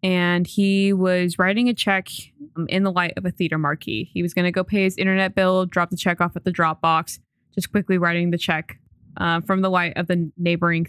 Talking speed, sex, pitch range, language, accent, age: 225 wpm, female, 170-205 Hz, English, American, 20-39